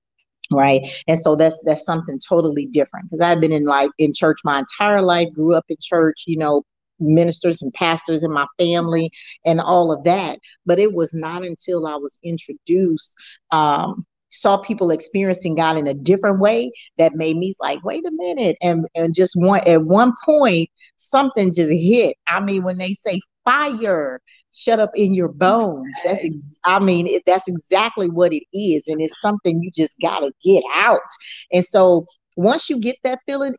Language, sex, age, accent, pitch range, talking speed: English, female, 40-59, American, 160-190 Hz, 190 wpm